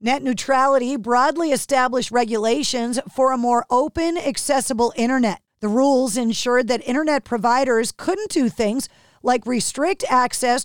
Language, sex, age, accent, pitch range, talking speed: English, female, 50-69, American, 230-280 Hz, 130 wpm